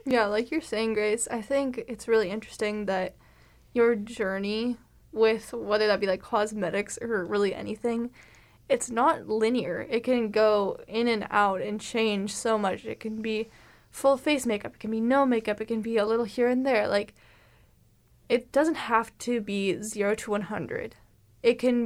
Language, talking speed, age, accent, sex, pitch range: English, 180 wpm, 10-29, American, female, 210-245 Hz